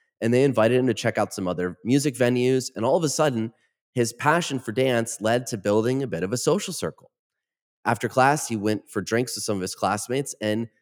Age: 30-49